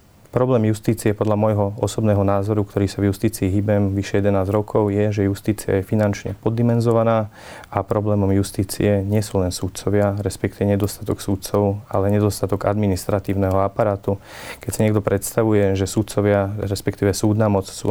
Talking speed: 145 wpm